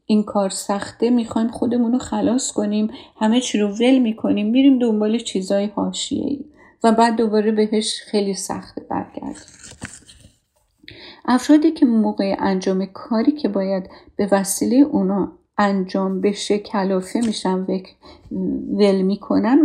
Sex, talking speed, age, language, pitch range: female, 125 wpm, 50-69, Persian, 205-280 Hz